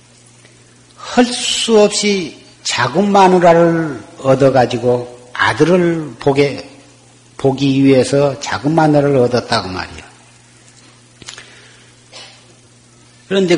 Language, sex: Korean, male